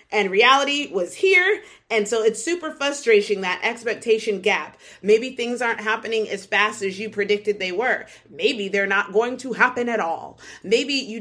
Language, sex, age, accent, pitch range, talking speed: English, female, 30-49, American, 195-225 Hz, 175 wpm